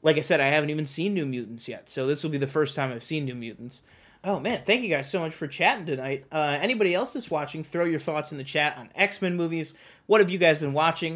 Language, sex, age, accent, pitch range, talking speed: English, male, 30-49, American, 140-175 Hz, 275 wpm